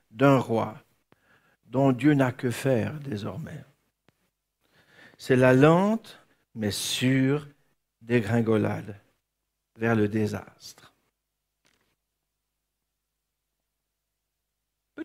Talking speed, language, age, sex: 70 wpm, French, 60-79, male